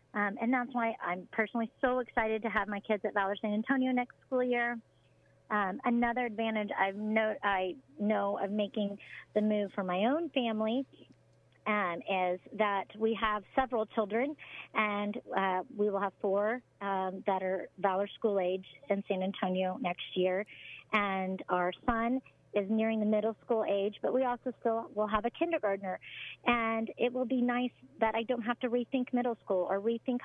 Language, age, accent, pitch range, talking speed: English, 40-59, American, 200-240 Hz, 175 wpm